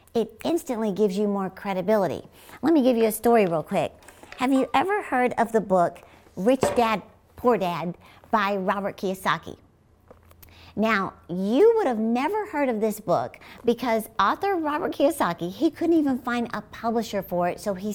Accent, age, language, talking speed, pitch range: American, 50-69, English, 170 wpm, 190-255 Hz